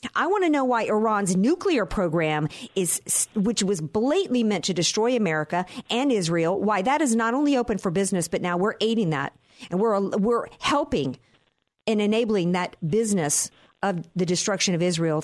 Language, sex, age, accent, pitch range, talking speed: English, female, 50-69, American, 175-235 Hz, 175 wpm